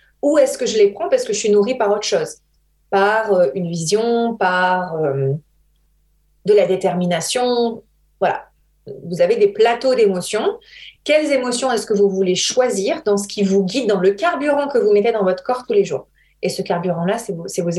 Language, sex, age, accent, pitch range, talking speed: French, female, 30-49, French, 190-255 Hz, 195 wpm